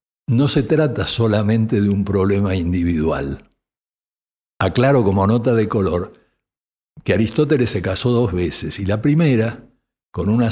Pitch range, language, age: 95-130 Hz, Spanish, 60-79